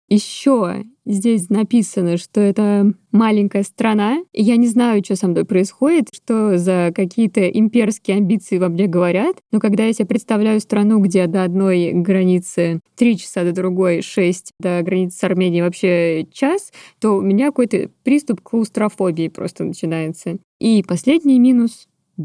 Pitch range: 190-245 Hz